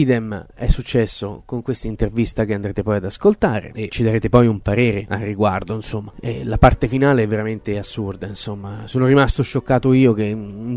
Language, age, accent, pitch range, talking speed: Italian, 30-49, native, 110-130 Hz, 190 wpm